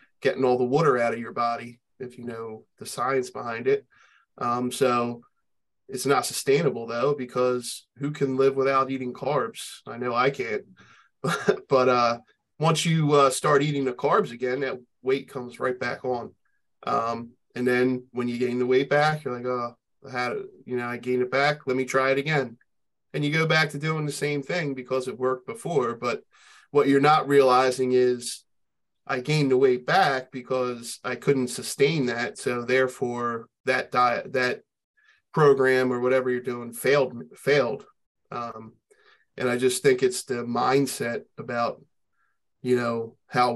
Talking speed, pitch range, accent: 175 wpm, 120-140 Hz, American